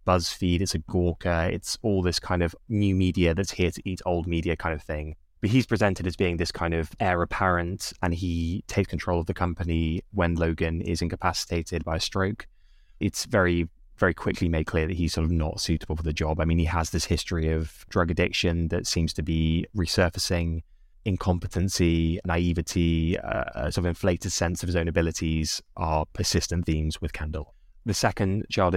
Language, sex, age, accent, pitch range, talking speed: English, male, 20-39, British, 85-95 Hz, 195 wpm